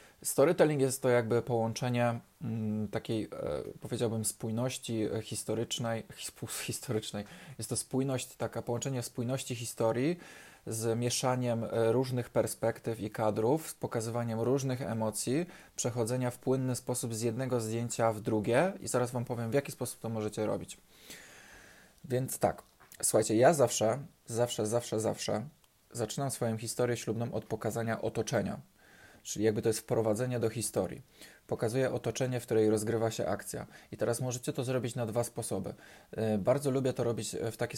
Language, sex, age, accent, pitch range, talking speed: Polish, male, 20-39, native, 110-125 Hz, 140 wpm